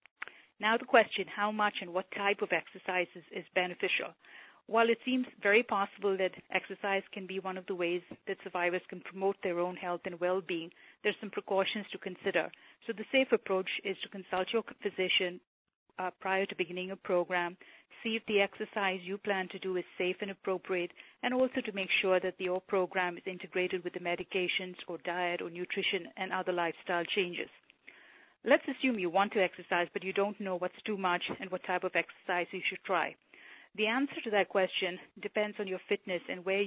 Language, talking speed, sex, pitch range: English, 195 wpm, female, 180-205 Hz